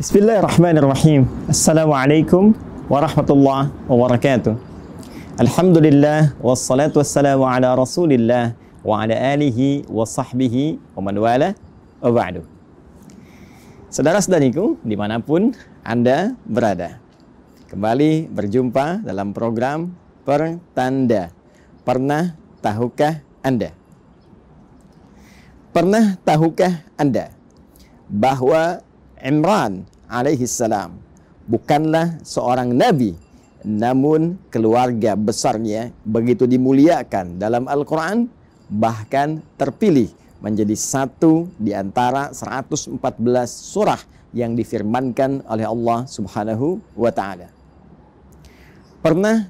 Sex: male